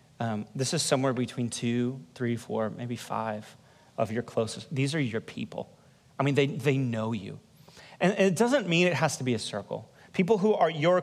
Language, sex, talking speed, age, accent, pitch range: English, male, 205 wpm, 30-49, American, 120-155 Hz